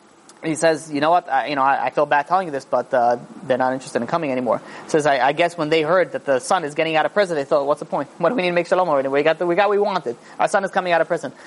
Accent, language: American, English